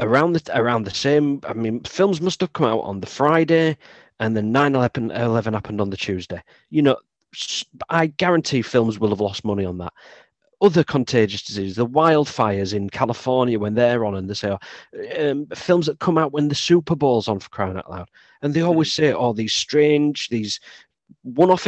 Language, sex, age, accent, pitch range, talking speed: English, male, 40-59, British, 105-145 Hz, 195 wpm